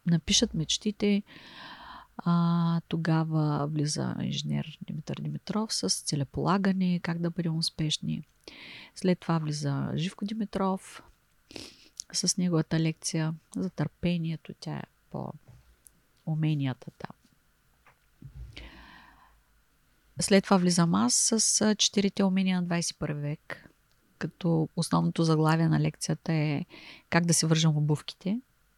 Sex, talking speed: female, 105 wpm